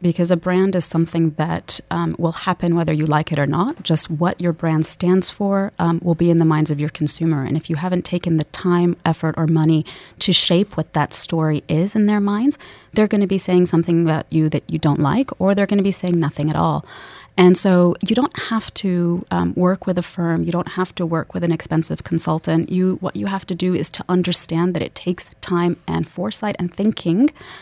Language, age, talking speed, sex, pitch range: English, 30-49, 235 wpm, female, 160-185 Hz